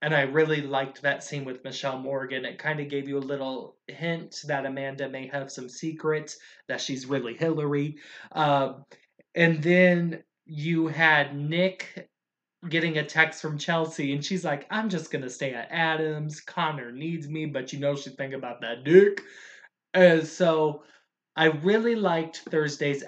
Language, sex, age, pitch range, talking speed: English, male, 20-39, 140-170 Hz, 170 wpm